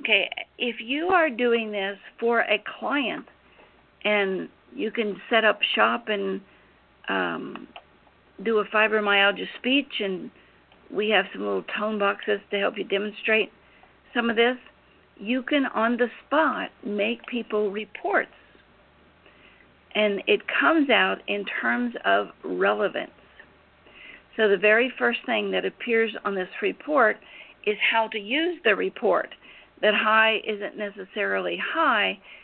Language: English